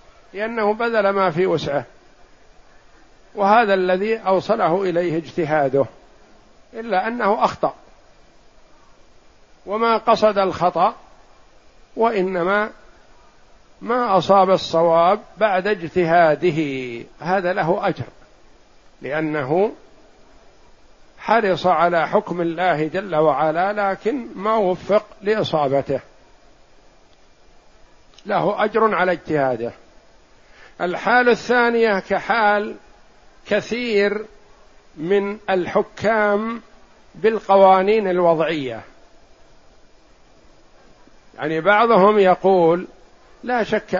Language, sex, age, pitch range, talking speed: Arabic, male, 60-79, 175-215 Hz, 70 wpm